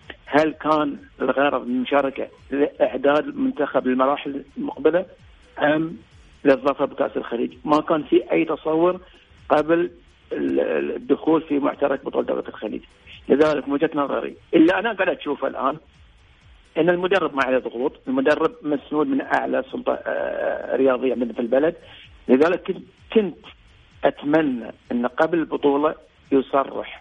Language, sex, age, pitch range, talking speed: Arabic, male, 50-69, 140-190 Hz, 120 wpm